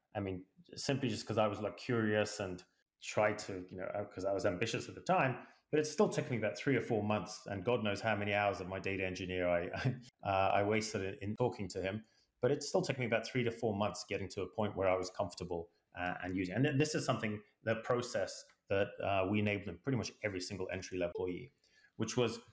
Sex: male